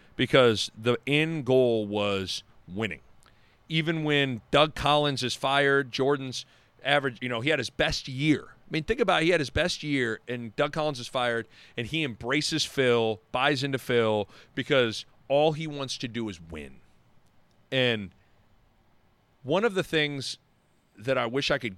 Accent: American